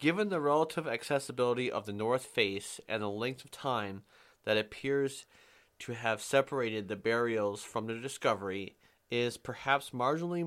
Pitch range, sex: 110-140 Hz, male